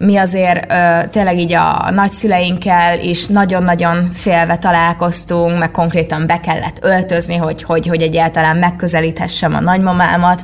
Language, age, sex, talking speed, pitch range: Hungarian, 20-39, female, 125 wpm, 170-210 Hz